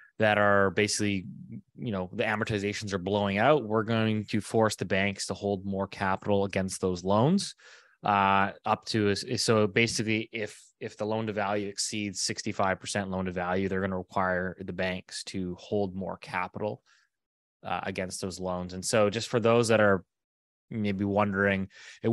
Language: English